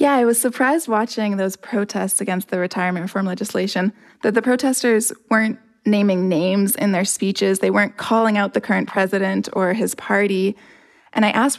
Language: English